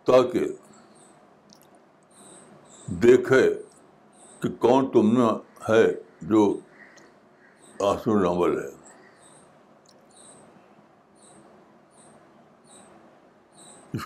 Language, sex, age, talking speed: Urdu, male, 60-79, 50 wpm